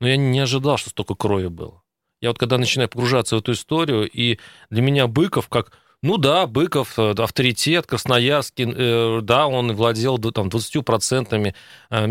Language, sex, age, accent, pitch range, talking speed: Russian, male, 30-49, native, 105-130 Hz, 160 wpm